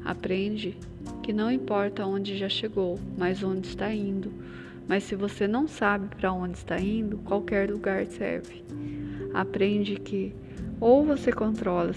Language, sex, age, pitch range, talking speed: Portuguese, female, 20-39, 180-220 Hz, 140 wpm